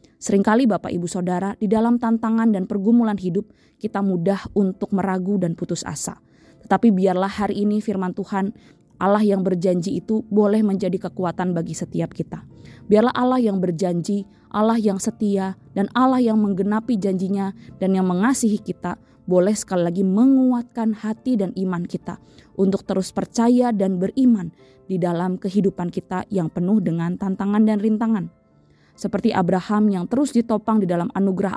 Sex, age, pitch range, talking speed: female, 20-39, 180-210 Hz, 150 wpm